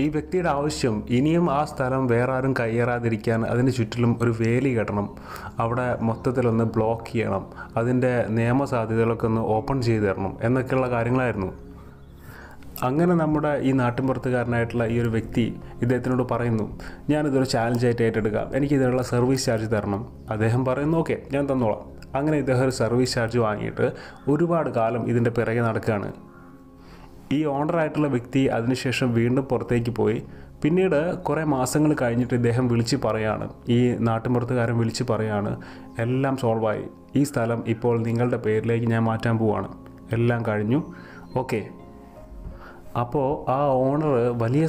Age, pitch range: 30-49, 115-130 Hz